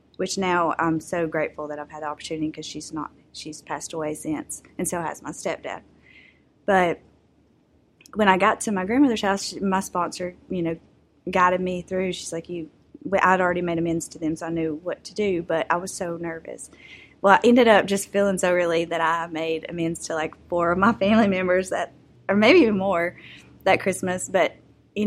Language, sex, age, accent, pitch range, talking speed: English, female, 20-39, American, 160-190 Hz, 205 wpm